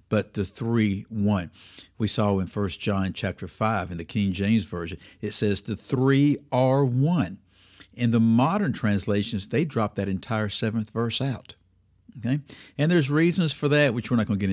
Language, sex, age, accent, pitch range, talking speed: English, male, 60-79, American, 100-130 Hz, 185 wpm